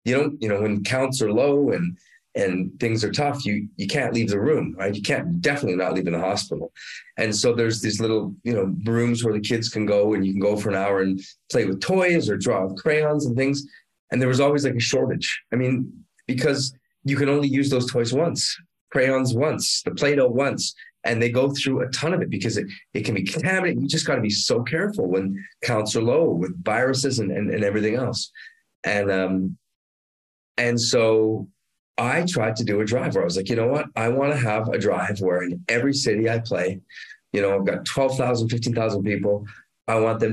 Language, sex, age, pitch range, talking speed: English, male, 30-49, 100-135 Hz, 225 wpm